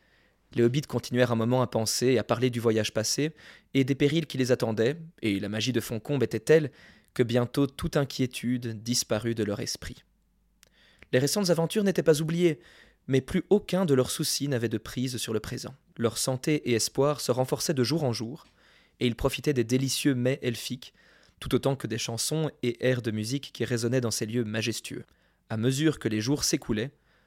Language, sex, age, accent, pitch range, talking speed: French, male, 20-39, French, 115-140 Hz, 200 wpm